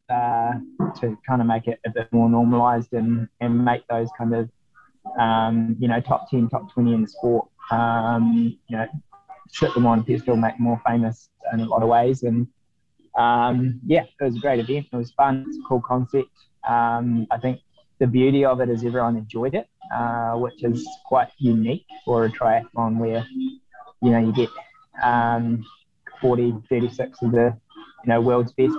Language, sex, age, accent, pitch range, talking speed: English, male, 20-39, Australian, 115-125 Hz, 190 wpm